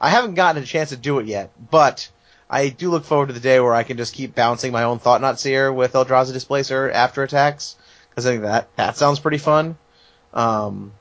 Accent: American